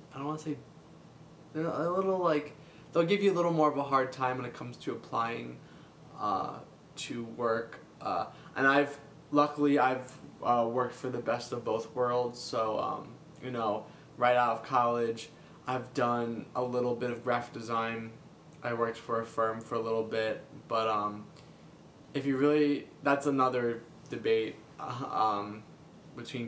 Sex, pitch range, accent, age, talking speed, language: male, 115-150 Hz, American, 20-39, 170 wpm, English